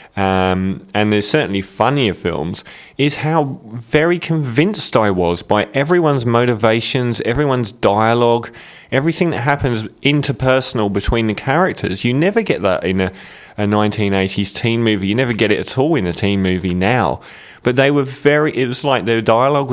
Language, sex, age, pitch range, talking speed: English, male, 30-49, 100-135 Hz, 165 wpm